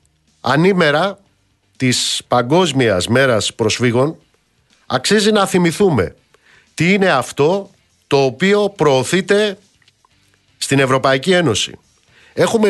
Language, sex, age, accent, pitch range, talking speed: Greek, male, 50-69, native, 125-180 Hz, 85 wpm